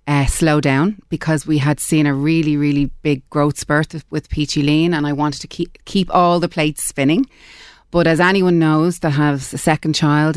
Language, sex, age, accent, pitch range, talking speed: English, female, 30-49, Irish, 140-155 Hz, 205 wpm